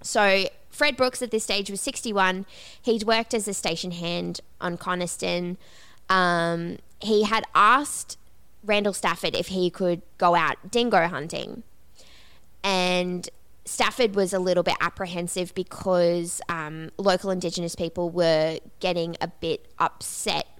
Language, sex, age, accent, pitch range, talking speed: English, female, 20-39, Australian, 170-200 Hz, 135 wpm